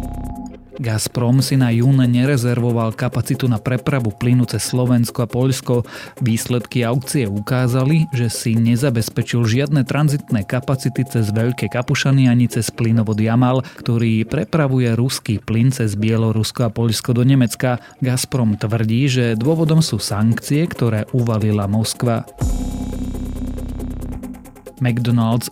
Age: 30-49